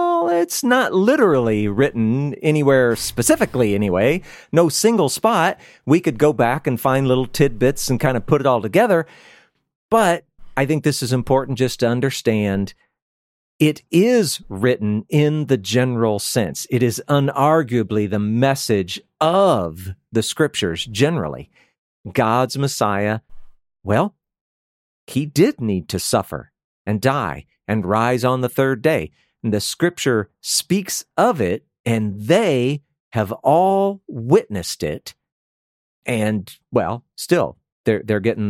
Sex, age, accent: male, 50-69, American